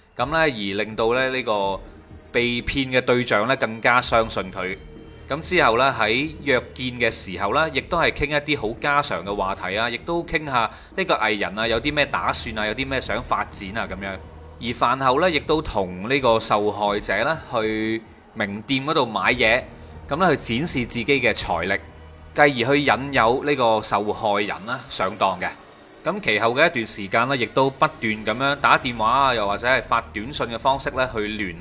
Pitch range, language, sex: 100-135 Hz, Chinese, male